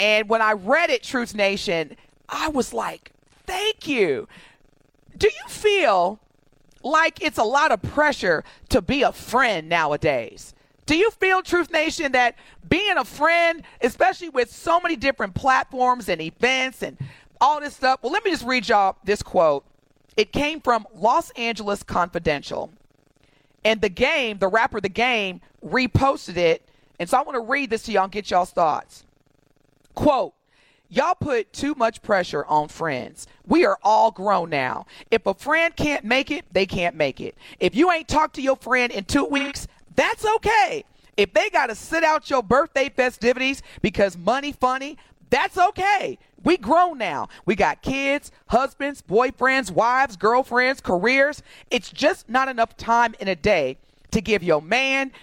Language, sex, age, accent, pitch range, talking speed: English, female, 40-59, American, 205-295 Hz, 165 wpm